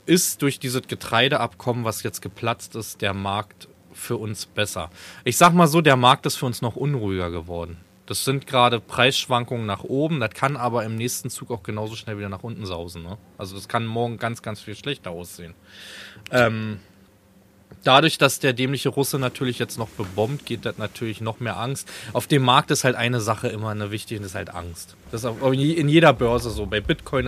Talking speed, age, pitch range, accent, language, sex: 205 wpm, 20-39, 100-135 Hz, German, German, male